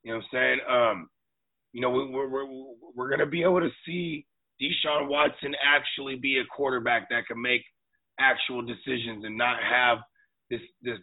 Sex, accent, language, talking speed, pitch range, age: male, American, English, 180 wpm, 115-130 Hz, 30-49